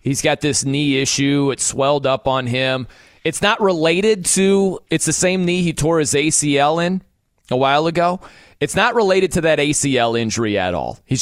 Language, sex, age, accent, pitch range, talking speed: English, male, 30-49, American, 145-200 Hz, 195 wpm